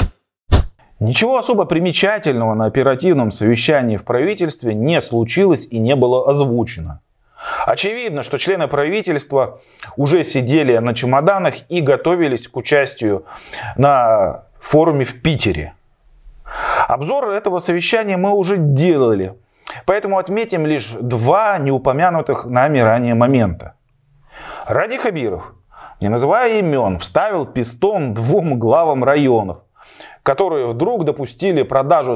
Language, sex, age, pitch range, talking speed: Russian, male, 30-49, 115-175 Hz, 110 wpm